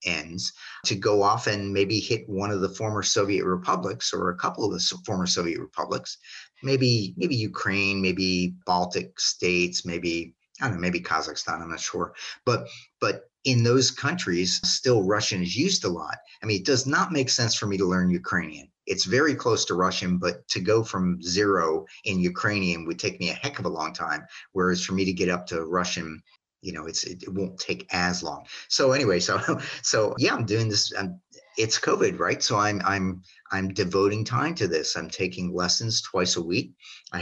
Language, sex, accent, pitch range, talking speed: English, male, American, 90-110 Hz, 200 wpm